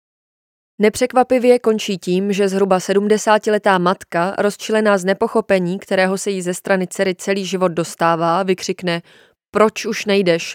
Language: Czech